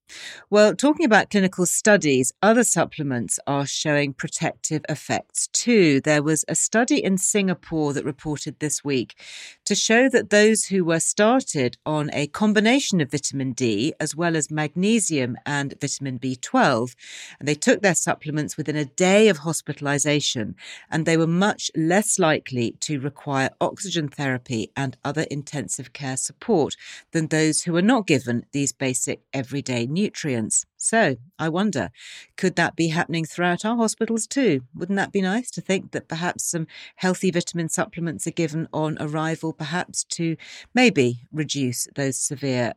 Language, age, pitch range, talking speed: English, 40-59, 140-190 Hz, 155 wpm